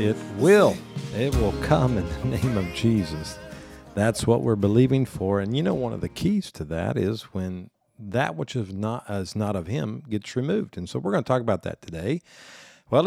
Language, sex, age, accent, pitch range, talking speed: English, male, 50-69, American, 95-115 Hz, 210 wpm